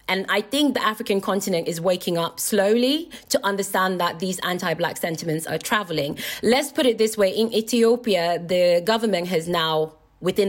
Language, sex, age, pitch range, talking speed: Swedish, female, 30-49, 180-235 Hz, 170 wpm